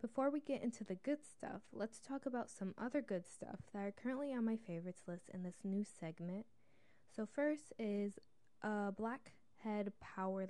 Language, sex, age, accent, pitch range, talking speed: English, female, 20-39, American, 185-220 Hz, 175 wpm